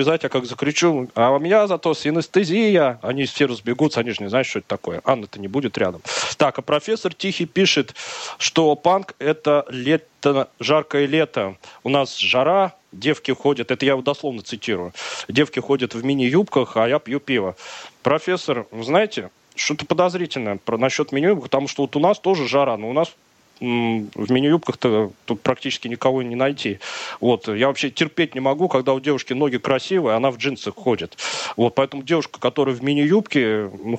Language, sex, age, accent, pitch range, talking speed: Russian, male, 30-49, native, 120-150 Hz, 175 wpm